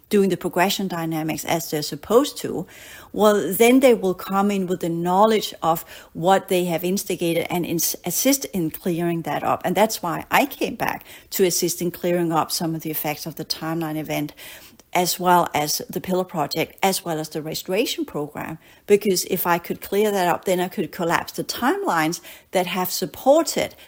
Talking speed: 190 wpm